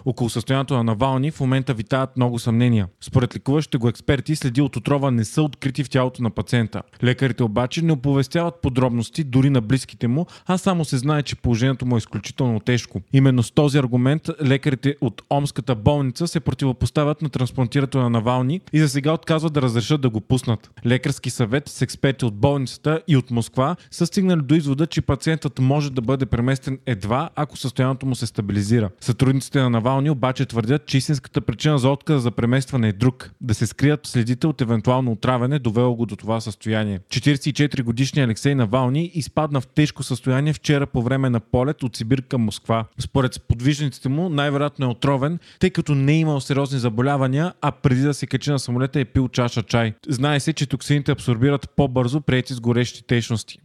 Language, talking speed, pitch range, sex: Bulgarian, 180 wpm, 120-145 Hz, male